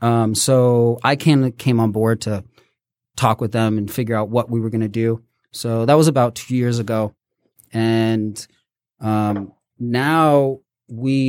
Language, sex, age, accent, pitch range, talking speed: English, male, 30-49, American, 110-130 Hz, 165 wpm